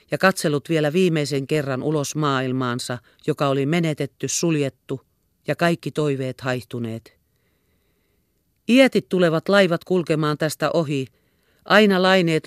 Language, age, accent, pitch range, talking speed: Finnish, 40-59, native, 135-175 Hz, 110 wpm